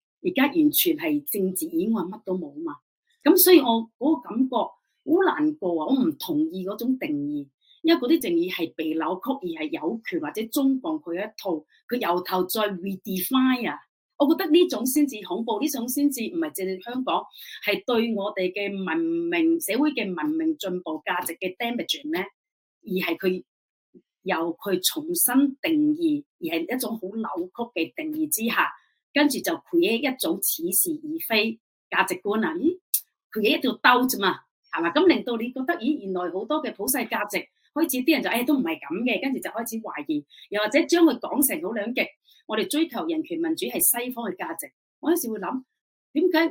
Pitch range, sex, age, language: 220-315 Hz, female, 30-49, Chinese